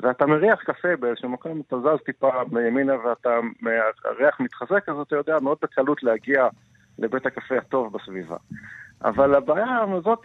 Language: Hebrew